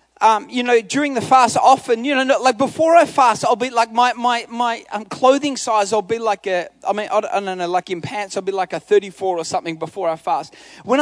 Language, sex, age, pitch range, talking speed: English, male, 30-49, 220-285 Hz, 250 wpm